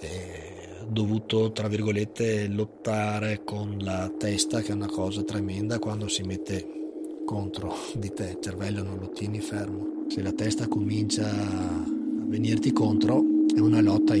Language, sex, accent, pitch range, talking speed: Italian, male, native, 100-125 Hz, 150 wpm